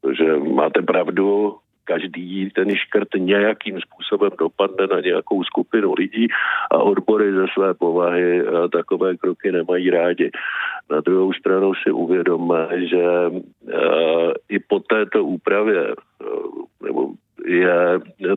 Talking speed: 110 wpm